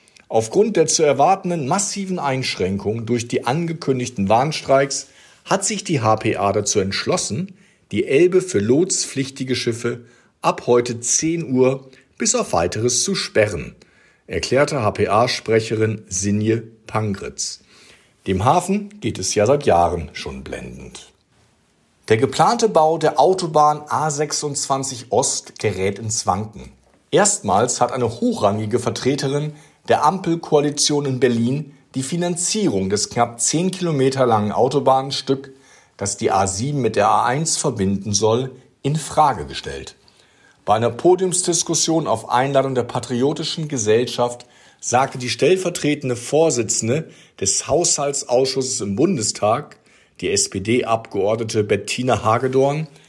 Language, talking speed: German, 115 wpm